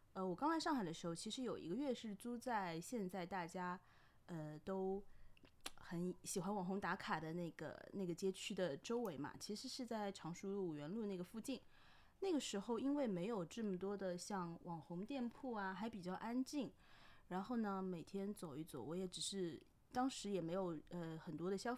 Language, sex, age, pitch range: Chinese, female, 20-39, 170-220 Hz